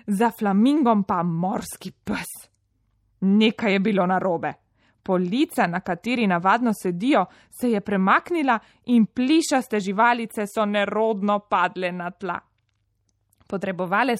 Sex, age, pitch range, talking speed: female, 20-39, 180-235 Hz, 110 wpm